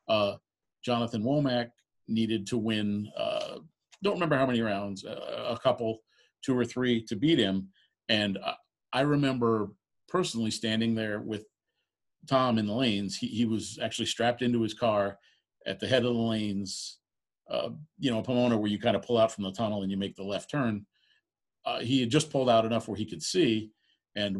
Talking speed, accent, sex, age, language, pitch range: 190 wpm, American, male, 50-69, English, 100-120 Hz